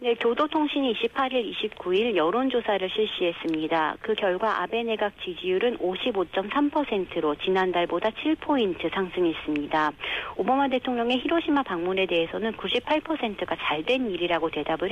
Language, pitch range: Korean, 180-270 Hz